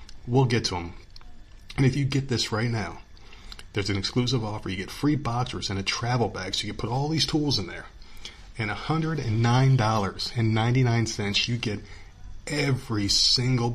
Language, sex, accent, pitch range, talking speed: English, male, American, 100-130 Hz, 160 wpm